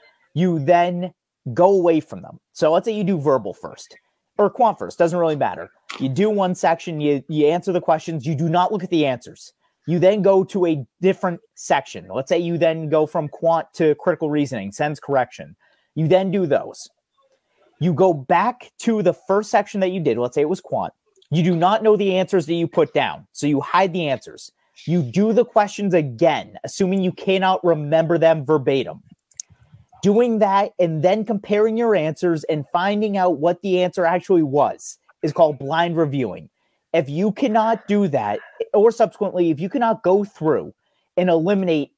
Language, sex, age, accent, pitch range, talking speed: English, male, 30-49, American, 160-200 Hz, 190 wpm